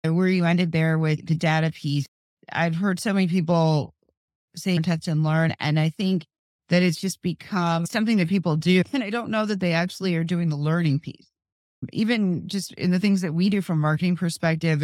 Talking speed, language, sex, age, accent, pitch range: 210 wpm, English, female, 40-59, American, 160-195 Hz